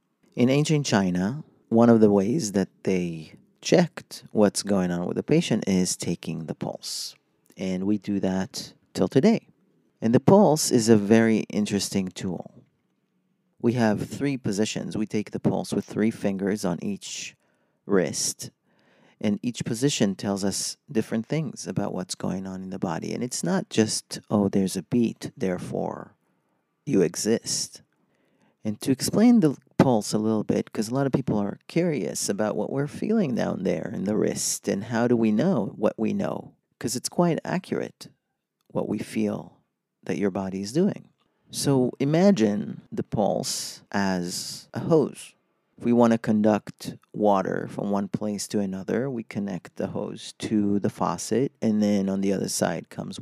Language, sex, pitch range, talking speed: English, male, 100-135 Hz, 170 wpm